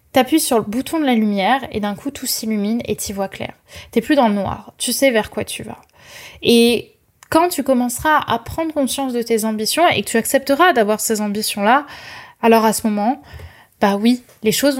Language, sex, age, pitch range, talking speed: French, female, 20-39, 220-265 Hz, 210 wpm